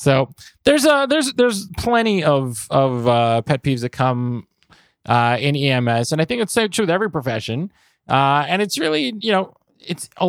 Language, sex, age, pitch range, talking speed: English, male, 30-49, 125-170 Hz, 200 wpm